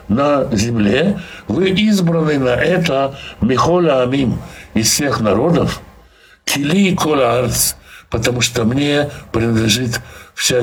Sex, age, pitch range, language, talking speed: male, 60-79, 115-155 Hz, Russian, 80 wpm